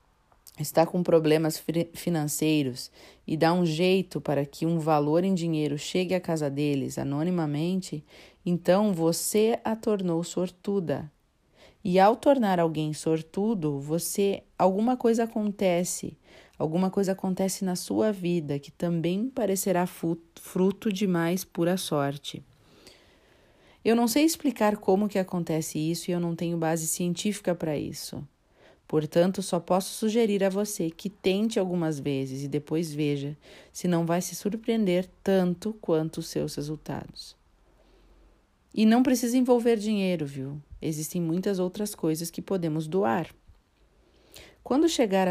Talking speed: 130 wpm